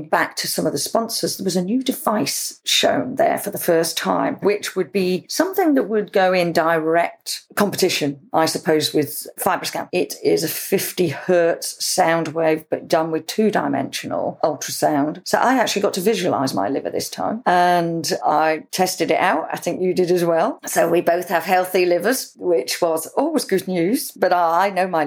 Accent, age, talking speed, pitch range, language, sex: British, 40-59, 190 wpm, 160-185 Hz, English, female